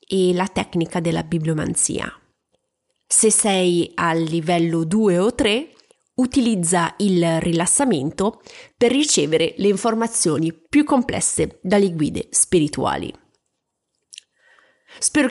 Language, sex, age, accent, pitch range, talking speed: Italian, female, 30-49, native, 175-225 Hz, 100 wpm